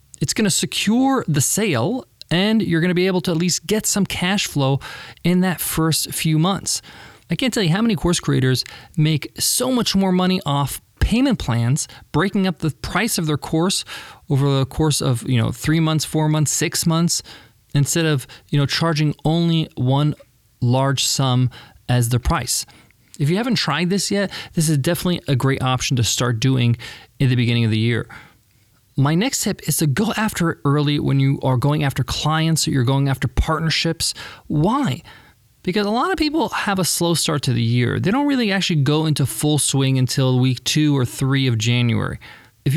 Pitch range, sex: 130-180 Hz, male